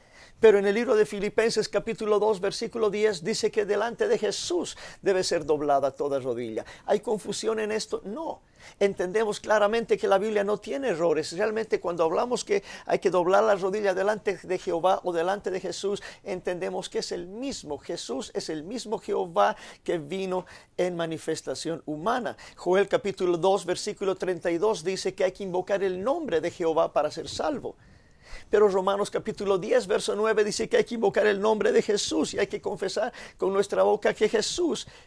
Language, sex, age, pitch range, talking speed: English, male, 50-69, 175-220 Hz, 180 wpm